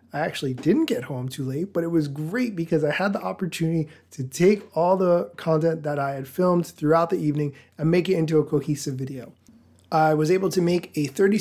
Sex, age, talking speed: male, 20-39, 220 wpm